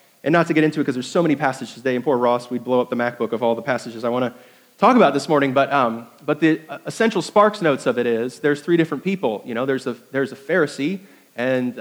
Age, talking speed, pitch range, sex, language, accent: 30-49, 270 wpm, 130-170 Hz, male, English, American